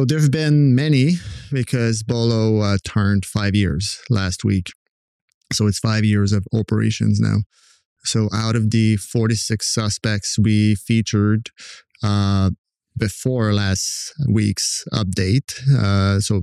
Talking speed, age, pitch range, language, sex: 130 wpm, 30-49, 105-120 Hz, English, male